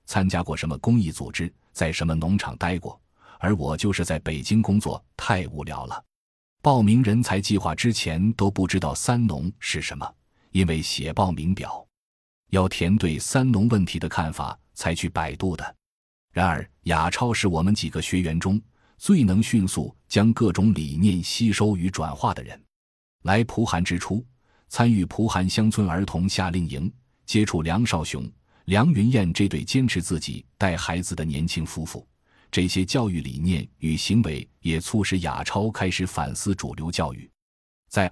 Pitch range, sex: 80-105 Hz, male